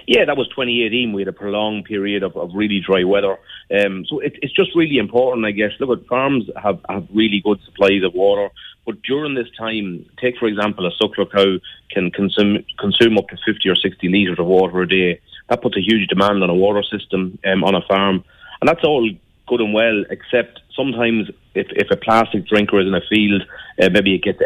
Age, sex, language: 30-49, male, English